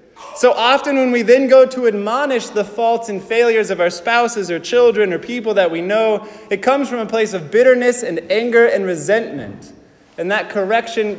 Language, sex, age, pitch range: English, male, 30-49, 200-245 Hz